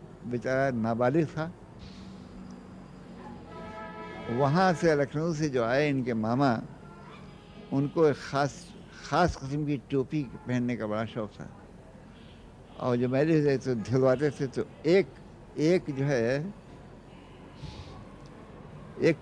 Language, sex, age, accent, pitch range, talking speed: Hindi, male, 60-79, native, 125-155 Hz, 110 wpm